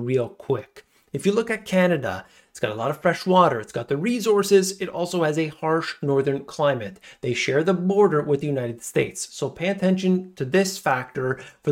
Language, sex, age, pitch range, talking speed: English, male, 30-49, 135-180 Hz, 205 wpm